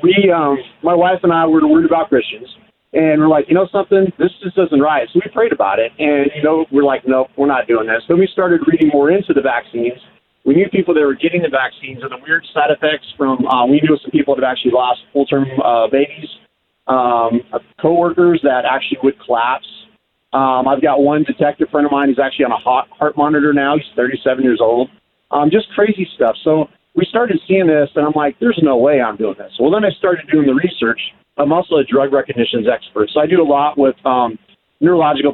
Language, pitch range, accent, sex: English, 135-165 Hz, American, male